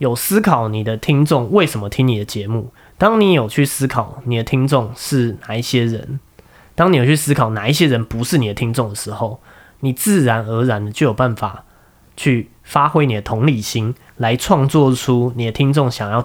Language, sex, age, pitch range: Chinese, male, 20-39, 110-150 Hz